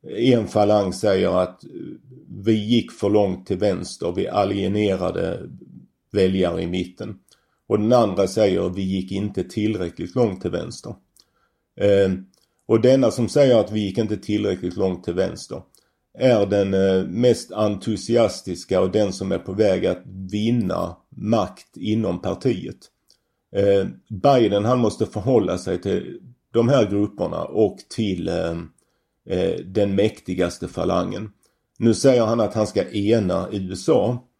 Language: Swedish